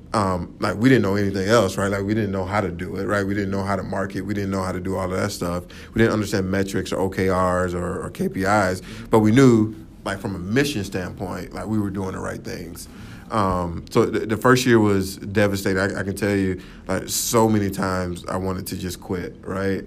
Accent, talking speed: American, 235 wpm